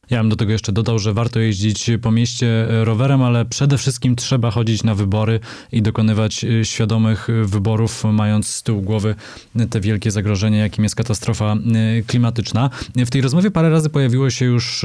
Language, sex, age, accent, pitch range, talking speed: Polish, male, 20-39, native, 105-120 Hz, 170 wpm